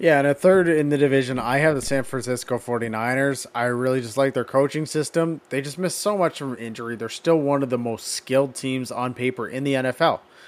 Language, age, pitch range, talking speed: English, 20-39, 120-140 Hz, 230 wpm